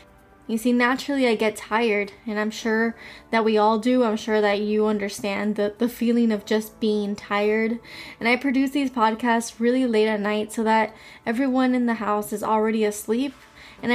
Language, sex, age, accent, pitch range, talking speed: English, female, 10-29, American, 210-240 Hz, 190 wpm